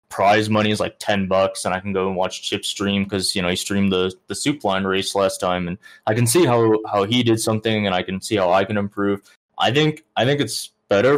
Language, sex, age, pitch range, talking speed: English, male, 20-39, 95-130 Hz, 265 wpm